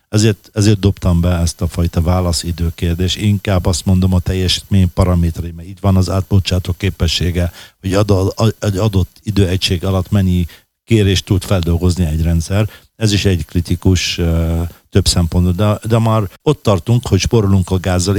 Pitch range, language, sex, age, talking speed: 85-100 Hz, Hungarian, male, 50-69, 155 wpm